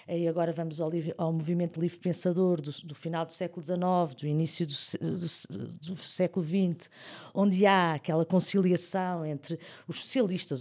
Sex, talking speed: female, 165 wpm